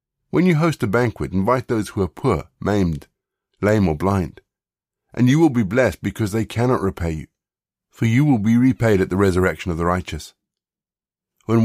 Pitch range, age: 90-110 Hz, 50-69